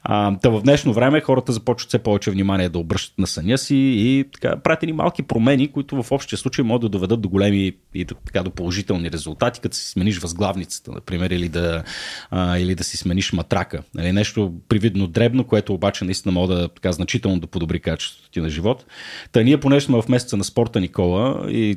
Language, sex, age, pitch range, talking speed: Bulgarian, male, 30-49, 90-115 Hz, 205 wpm